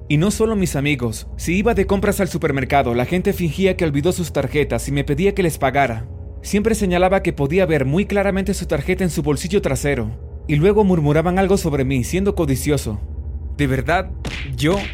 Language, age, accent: Spanish, 30-49, Mexican